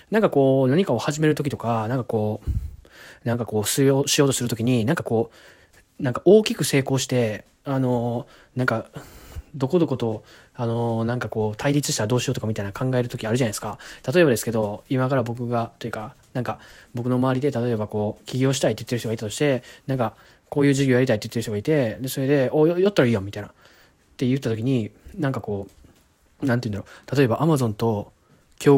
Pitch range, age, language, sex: 110-135 Hz, 20-39, Japanese, male